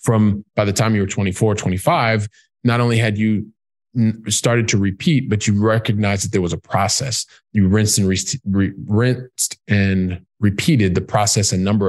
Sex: male